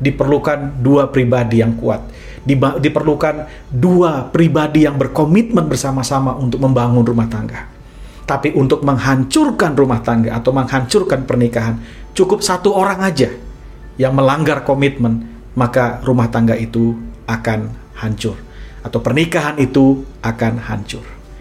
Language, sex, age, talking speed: Indonesian, male, 40-59, 115 wpm